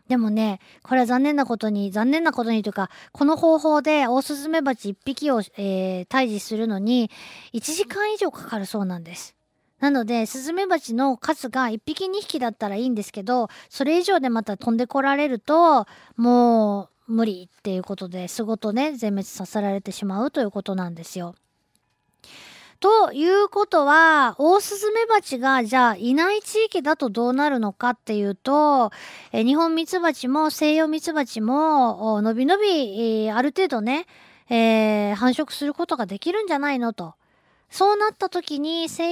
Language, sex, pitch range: Japanese, female, 220-310 Hz